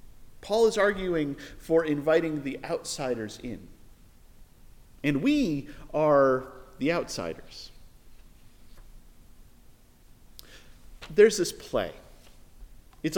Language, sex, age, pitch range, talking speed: English, male, 40-59, 145-235 Hz, 75 wpm